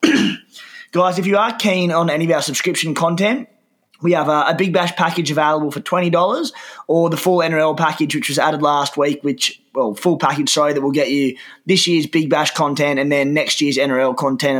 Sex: male